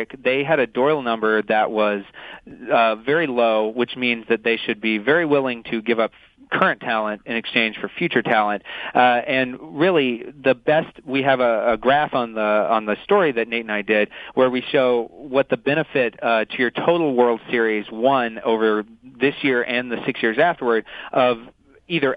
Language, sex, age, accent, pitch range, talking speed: English, male, 40-59, American, 110-135 Hz, 190 wpm